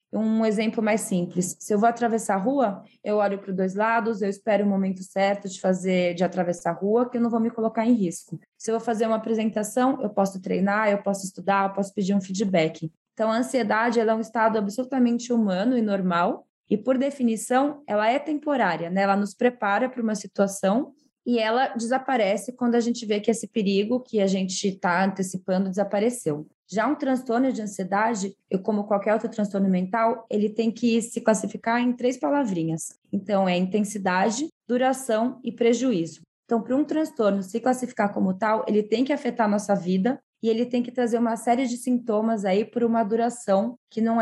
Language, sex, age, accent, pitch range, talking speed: Portuguese, female, 20-39, Brazilian, 195-235 Hz, 195 wpm